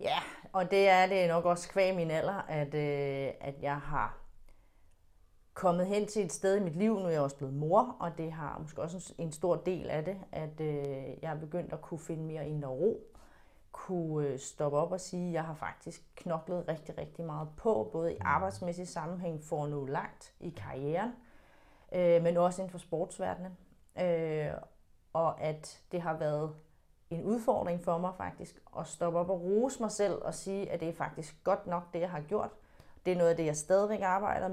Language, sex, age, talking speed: Danish, female, 30-49, 205 wpm